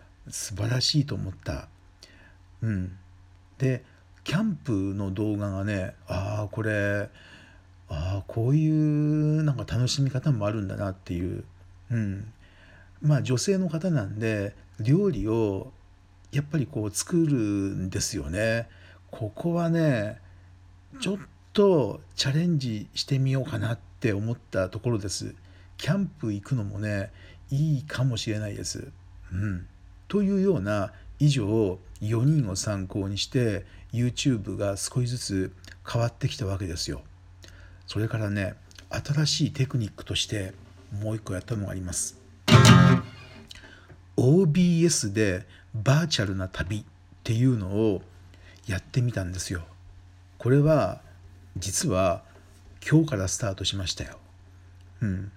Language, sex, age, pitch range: Japanese, male, 50-69, 90-120 Hz